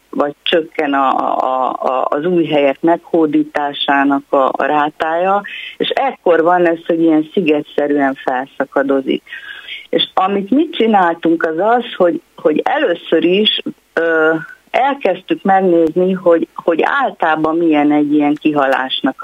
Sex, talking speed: female, 125 wpm